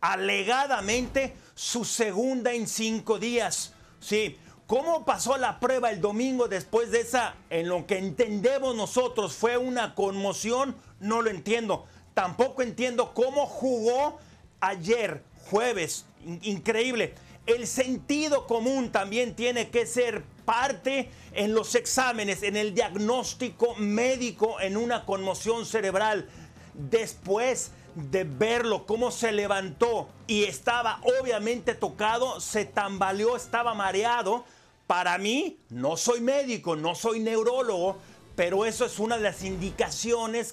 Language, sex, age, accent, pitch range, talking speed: Spanish, male, 40-59, Mexican, 205-255 Hz, 120 wpm